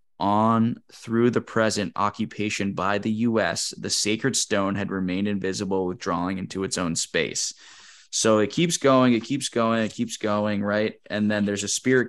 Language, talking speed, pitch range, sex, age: English, 175 wpm, 100-115 Hz, male, 20-39